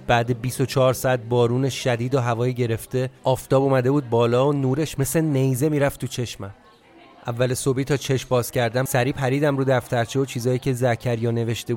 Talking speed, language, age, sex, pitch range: 175 wpm, Persian, 30-49, male, 110-135 Hz